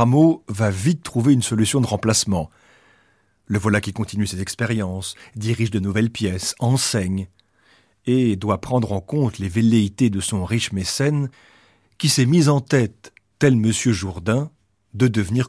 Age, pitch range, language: 40-59, 100-130 Hz, French